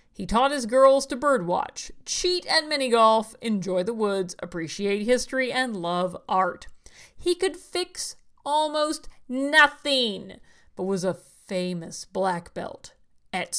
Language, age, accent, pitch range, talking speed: English, 40-59, American, 195-285 Hz, 130 wpm